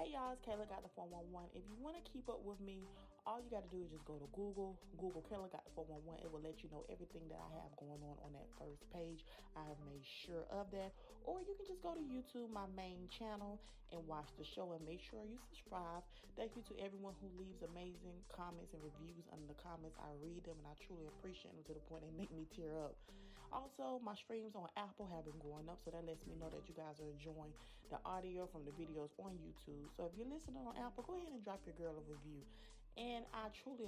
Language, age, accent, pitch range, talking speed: English, 30-49, American, 155-200 Hz, 250 wpm